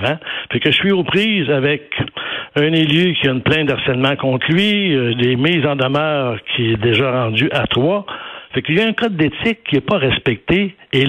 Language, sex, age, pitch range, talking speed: French, male, 60-79, 120-155 Hz, 210 wpm